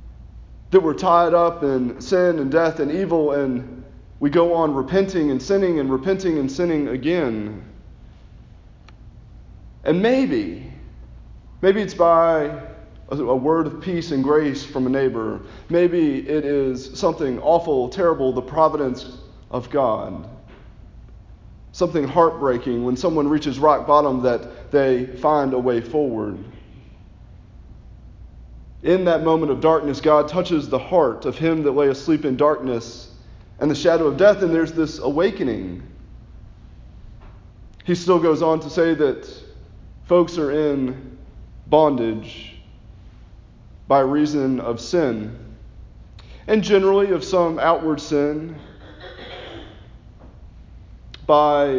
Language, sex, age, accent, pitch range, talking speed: English, male, 30-49, American, 120-165 Hz, 125 wpm